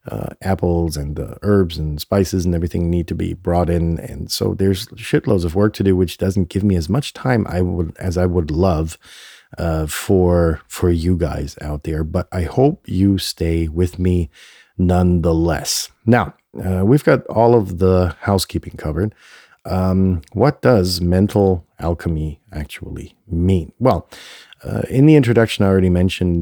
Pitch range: 85-100 Hz